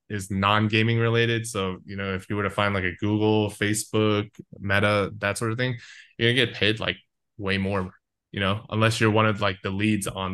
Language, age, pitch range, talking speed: English, 20-39, 100-120 Hz, 215 wpm